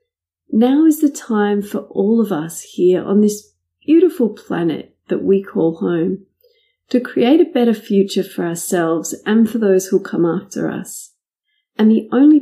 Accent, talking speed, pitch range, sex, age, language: Australian, 165 wpm, 185-250 Hz, female, 40-59, English